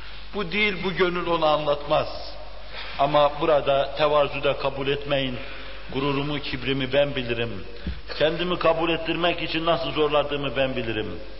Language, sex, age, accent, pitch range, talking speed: Turkish, male, 60-79, native, 140-185 Hz, 125 wpm